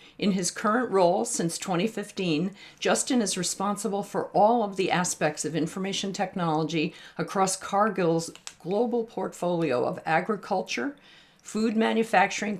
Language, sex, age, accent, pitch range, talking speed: English, female, 50-69, American, 160-195 Hz, 120 wpm